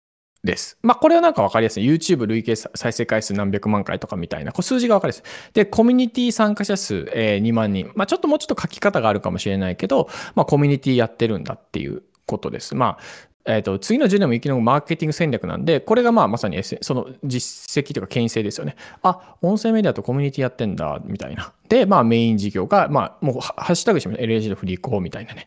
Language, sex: Japanese, male